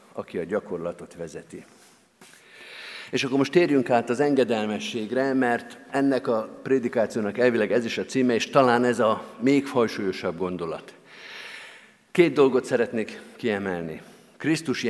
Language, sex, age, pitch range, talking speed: Hungarian, male, 50-69, 115-155 Hz, 130 wpm